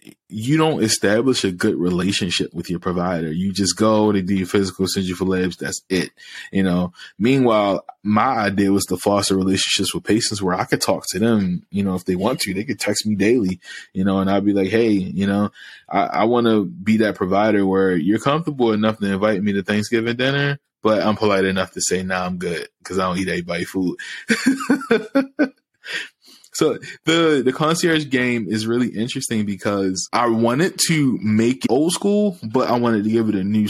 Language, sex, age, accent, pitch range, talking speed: English, male, 20-39, American, 95-115 Hz, 205 wpm